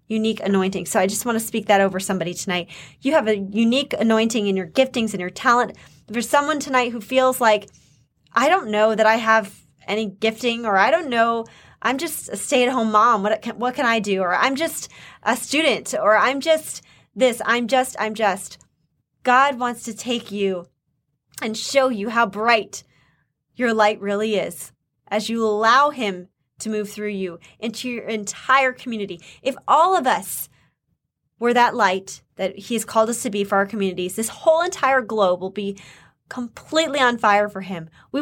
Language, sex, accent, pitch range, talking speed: English, female, American, 200-255 Hz, 190 wpm